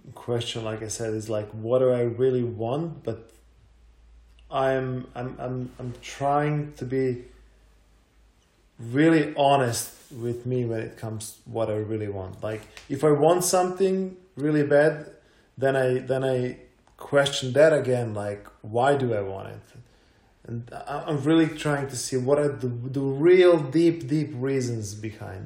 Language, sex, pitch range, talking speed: Croatian, male, 115-140 Hz, 155 wpm